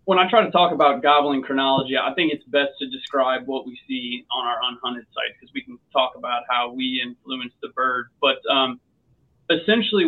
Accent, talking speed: American, 200 wpm